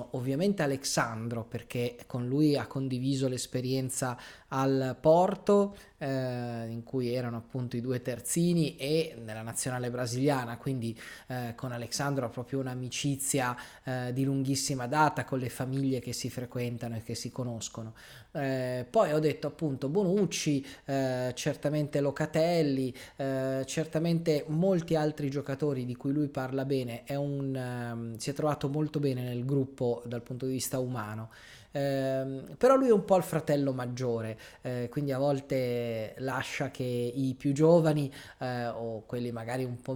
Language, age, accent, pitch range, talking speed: Italian, 20-39, native, 125-145 Hz, 150 wpm